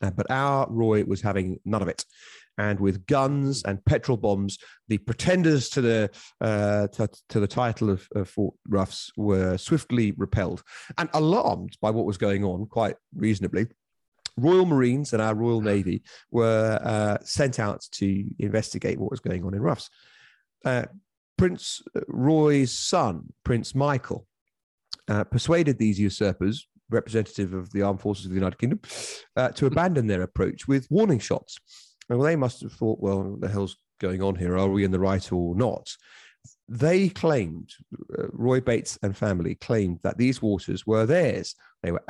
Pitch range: 100-125 Hz